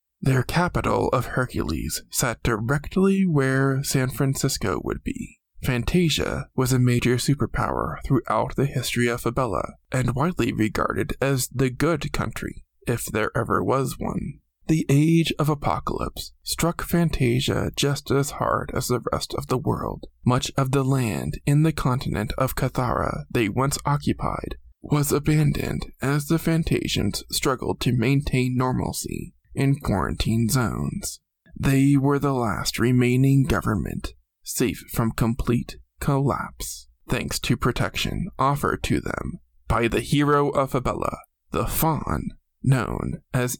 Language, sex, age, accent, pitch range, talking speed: English, male, 20-39, American, 115-140 Hz, 135 wpm